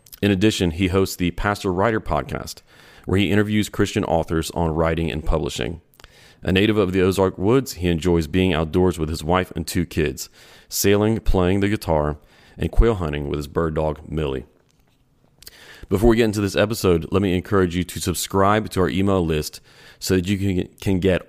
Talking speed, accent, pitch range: 185 wpm, American, 80-100 Hz